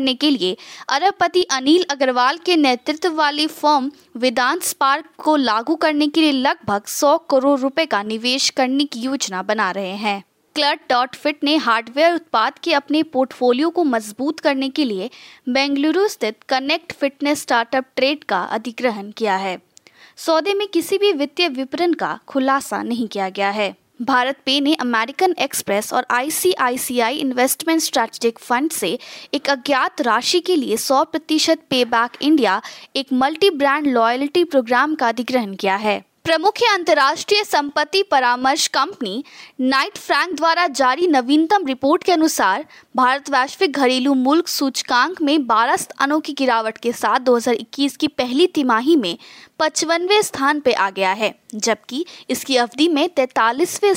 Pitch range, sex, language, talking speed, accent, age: 245-315 Hz, female, Hindi, 150 wpm, native, 20-39